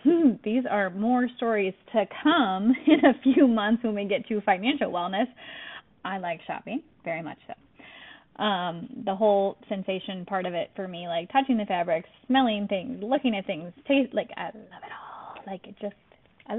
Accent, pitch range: American, 190-250 Hz